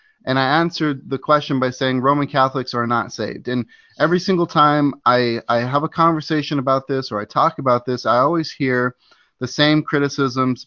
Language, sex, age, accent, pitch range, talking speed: English, male, 30-49, American, 130-155 Hz, 190 wpm